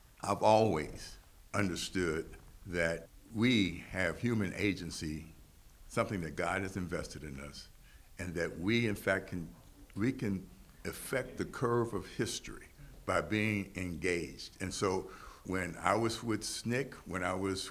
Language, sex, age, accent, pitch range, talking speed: English, male, 60-79, American, 85-105 Hz, 140 wpm